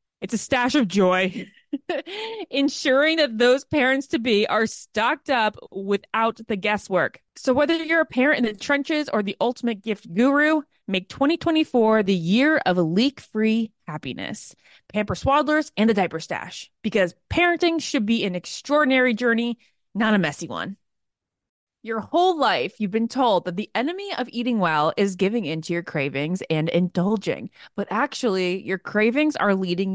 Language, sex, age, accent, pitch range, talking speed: English, female, 20-39, American, 190-270 Hz, 155 wpm